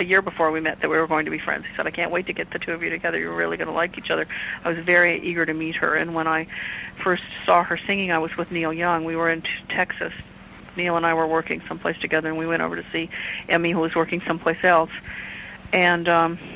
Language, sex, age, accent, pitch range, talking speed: English, female, 50-69, American, 160-180 Hz, 270 wpm